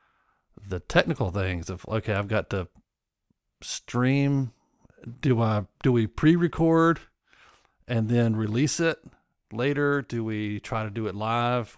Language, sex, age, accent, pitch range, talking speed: English, male, 50-69, American, 95-125 Hz, 130 wpm